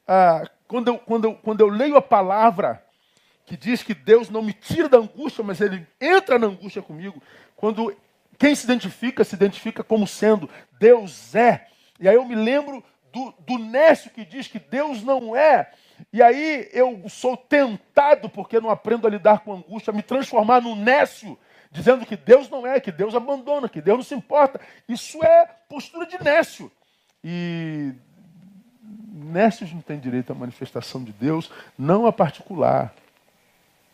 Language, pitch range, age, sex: Portuguese, 170-250 Hz, 40-59, male